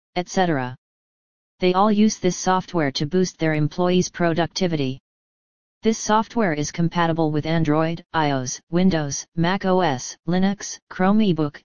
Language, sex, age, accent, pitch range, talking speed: English, female, 40-59, American, 155-185 Hz, 115 wpm